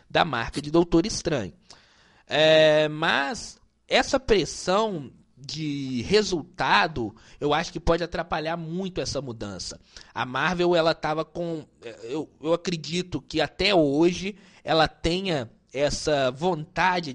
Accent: Brazilian